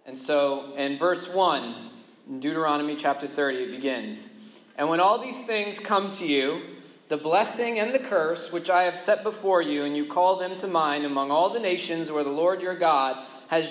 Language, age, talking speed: English, 40-59, 195 wpm